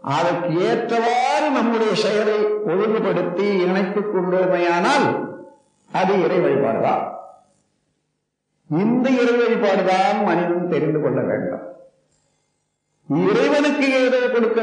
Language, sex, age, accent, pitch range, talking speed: Tamil, male, 50-69, native, 190-260 Hz, 80 wpm